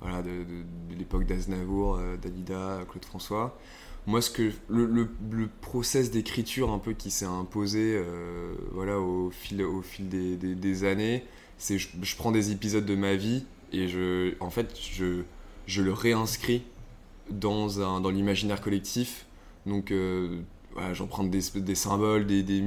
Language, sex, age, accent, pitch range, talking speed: French, male, 20-39, French, 90-110 Hz, 175 wpm